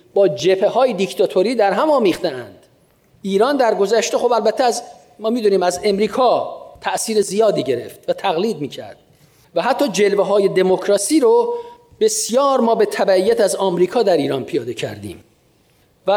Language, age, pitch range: Persian, 40-59, 180-235 Hz